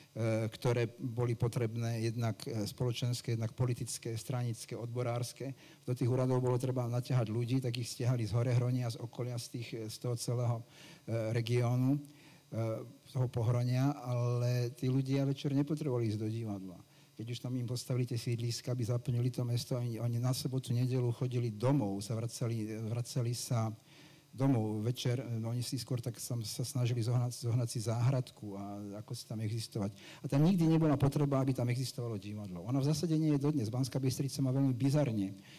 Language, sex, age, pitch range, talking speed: Slovak, male, 50-69, 120-135 Hz, 170 wpm